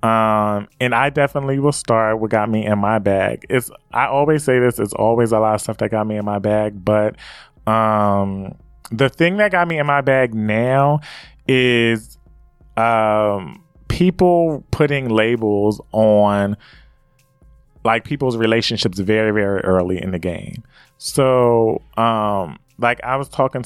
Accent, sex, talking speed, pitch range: American, male, 155 wpm, 105-140 Hz